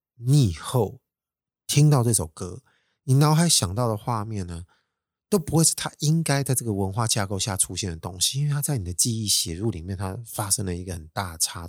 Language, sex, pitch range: Chinese, male, 90-115 Hz